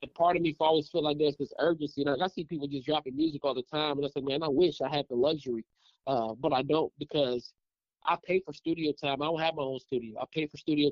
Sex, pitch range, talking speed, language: male, 140-175 Hz, 290 wpm, English